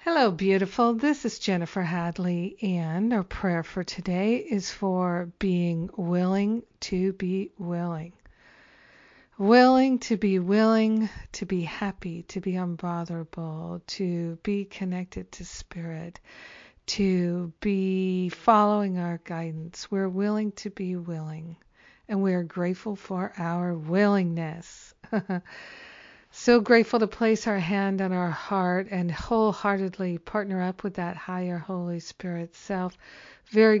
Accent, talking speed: American, 120 wpm